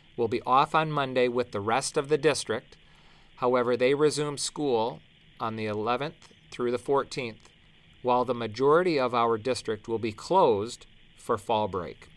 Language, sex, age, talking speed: English, male, 40-59, 165 wpm